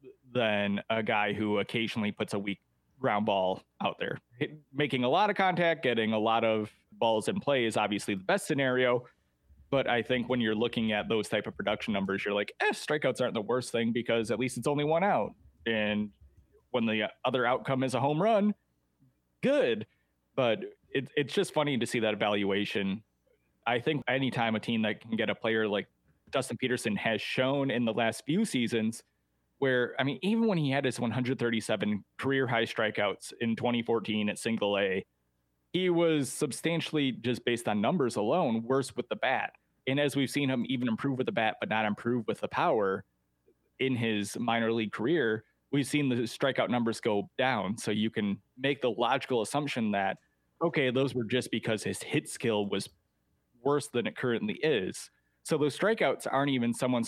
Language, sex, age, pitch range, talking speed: English, male, 30-49, 105-130 Hz, 190 wpm